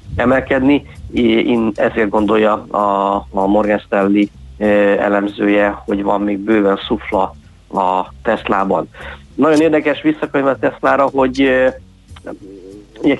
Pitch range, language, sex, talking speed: 105-125 Hz, Hungarian, male, 95 wpm